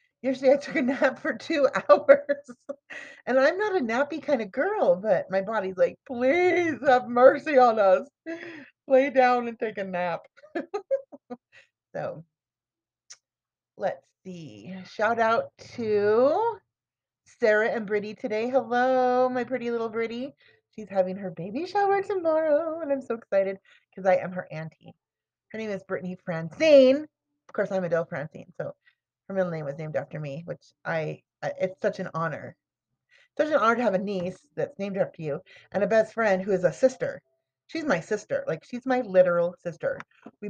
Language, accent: English, American